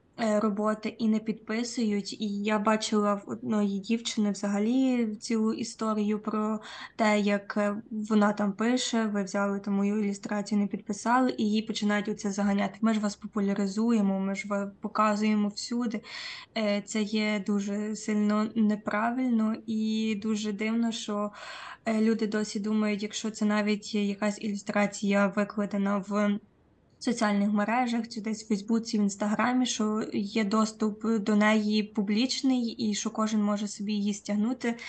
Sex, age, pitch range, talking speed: female, 20-39, 210-225 Hz, 140 wpm